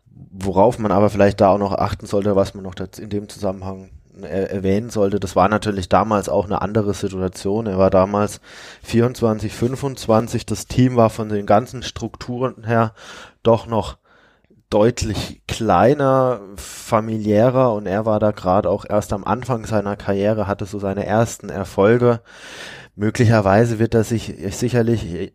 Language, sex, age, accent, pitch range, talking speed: German, male, 20-39, German, 95-110 Hz, 155 wpm